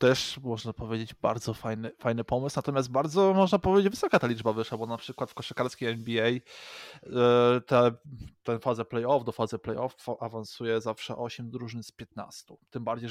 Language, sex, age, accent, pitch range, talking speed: Polish, male, 20-39, native, 115-125 Hz, 170 wpm